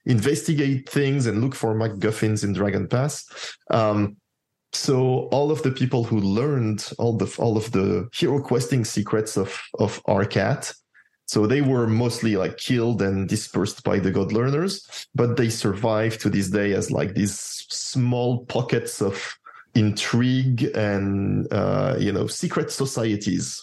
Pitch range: 105-130 Hz